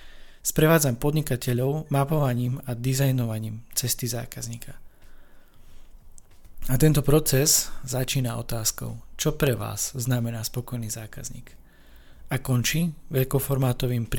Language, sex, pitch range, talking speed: Slovak, male, 115-140 Hz, 90 wpm